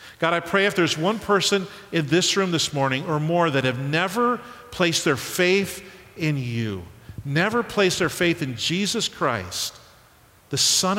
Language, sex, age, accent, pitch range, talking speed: English, male, 50-69, American, 110-155 Hz, 170 wpm